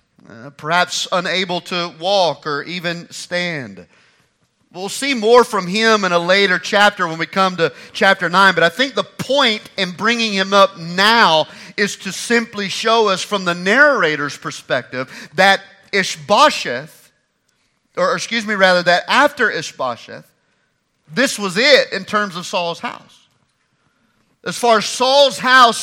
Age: 40-59